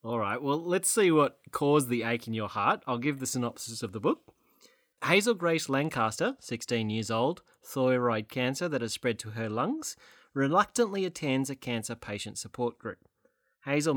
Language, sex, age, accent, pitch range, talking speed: English, male, 30-49, Australian, 110-175 Hz, 175 wpm